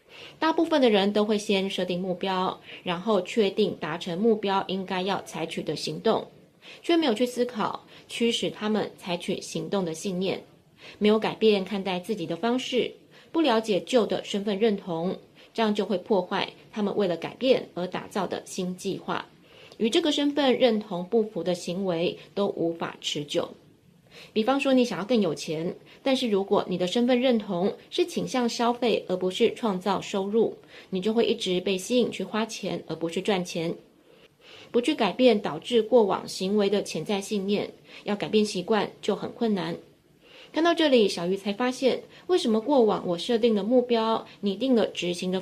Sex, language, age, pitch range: female, Chinese, 20-39, 180-235 Hz